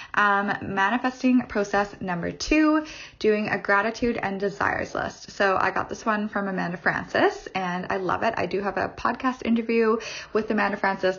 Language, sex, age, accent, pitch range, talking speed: English, female, 20-39, American, 180-225 Hz, 170 wpm